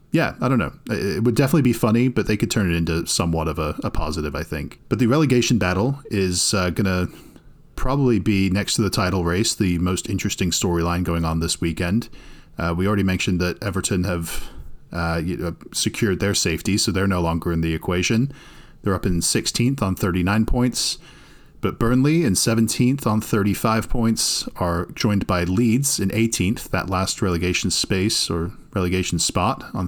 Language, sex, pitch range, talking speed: English, male, 90-115 Hz, 180 wpm